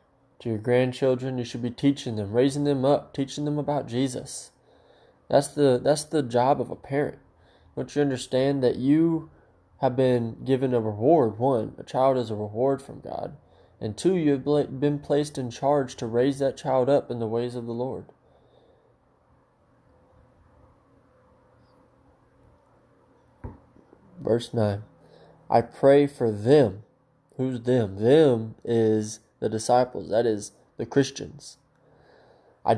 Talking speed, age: 140 wpm, 20-39